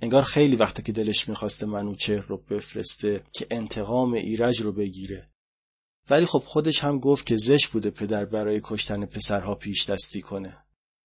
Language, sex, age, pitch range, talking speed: Persian, male, 30-49, 105-130 Hz, 155 wpm